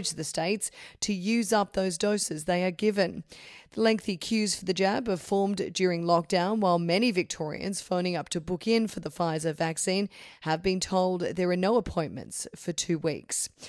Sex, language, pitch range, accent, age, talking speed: female, English, 175-215 Hz, Australian, 30-49, 185 wpm